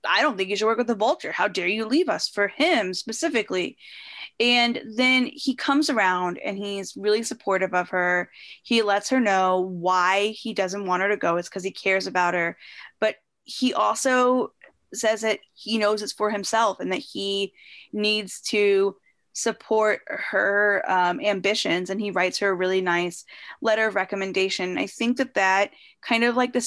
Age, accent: 10-29, American